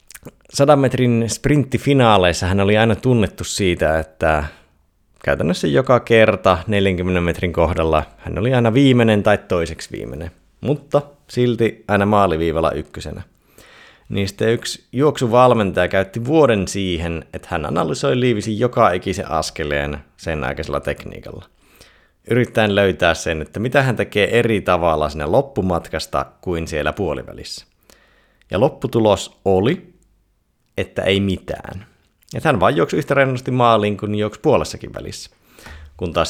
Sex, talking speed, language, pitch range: male, 125 wpm, Finnish, 85-115 Hz